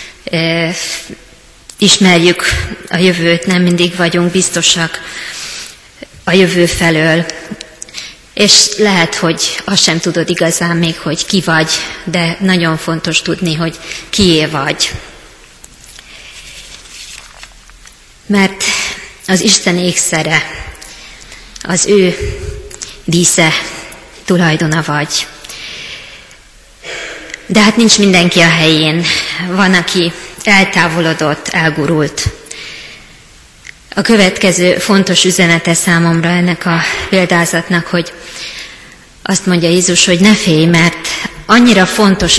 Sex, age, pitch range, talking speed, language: female, 20-39, 165-185 Hz, 90 wpm, Hungarian